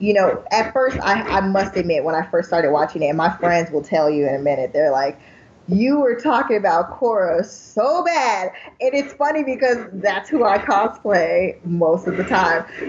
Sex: female